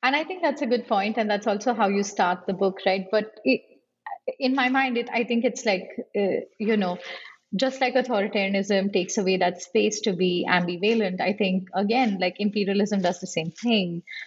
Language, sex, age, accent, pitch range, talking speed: English, female, 30-49, Indian, 185-220 Hz, 200 wpm